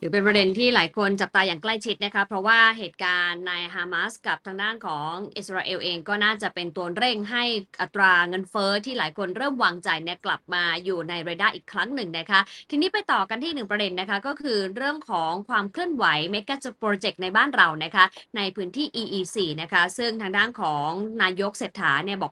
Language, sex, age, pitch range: Thai, female, 20-39, 180-225 Hz